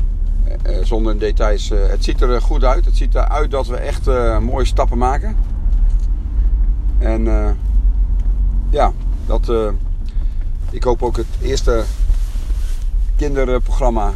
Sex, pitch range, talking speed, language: male, 85-115 Hz, 115 wpm, Dutch